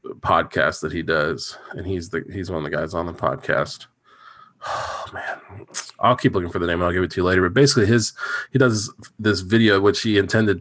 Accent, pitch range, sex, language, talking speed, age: American, 95-120 Hz, male, English, 220 wpm, 20-39